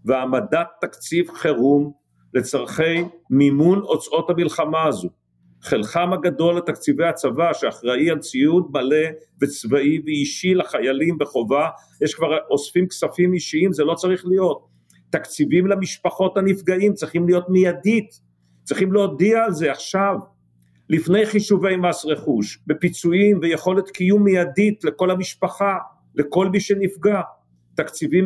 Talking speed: 115 wpm